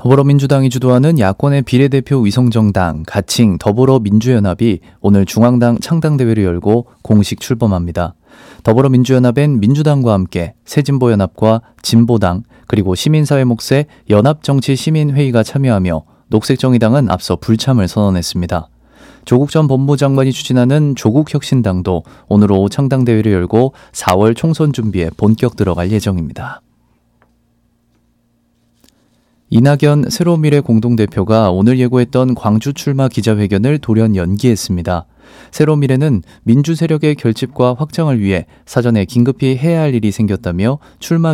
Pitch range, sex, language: 100-135 Hz, male, Korean